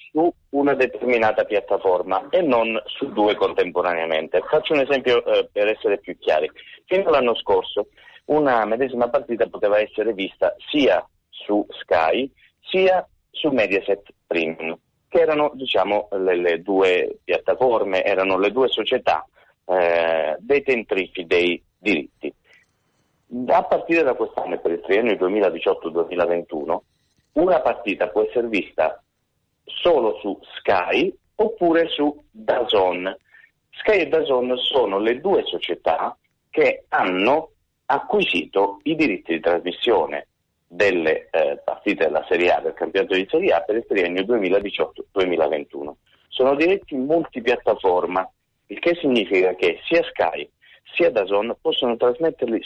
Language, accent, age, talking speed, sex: Italian, native, 30-49, 125 wpm, male